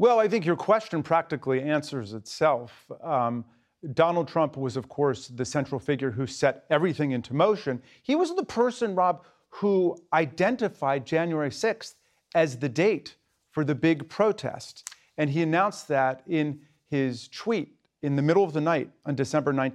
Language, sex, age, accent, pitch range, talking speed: English, male, 40-59, American, 135-175 Hz, 160 wpm